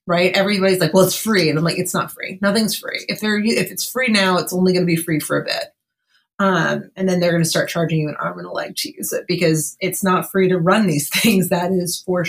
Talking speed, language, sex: 280 wpm, English, female